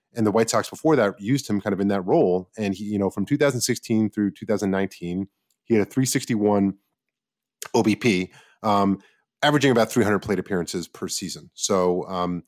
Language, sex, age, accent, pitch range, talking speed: English, male, 30-49, American, 95-115 Hz, 175 wpm